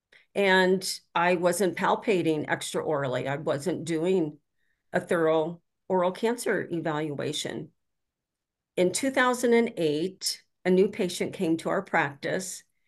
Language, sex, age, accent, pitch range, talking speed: English, female, 50-69, American, 160-195 Hz, 105 wpm